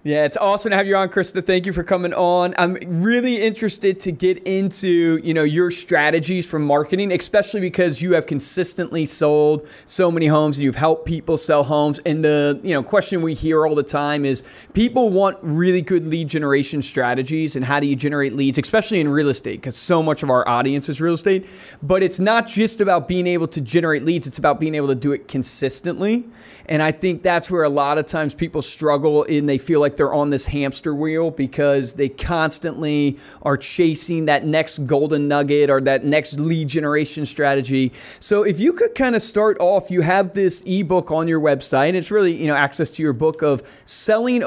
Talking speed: 210 wpm